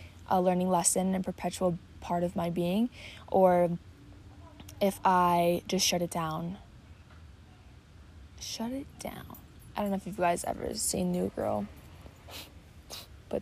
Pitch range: 165-190 Hz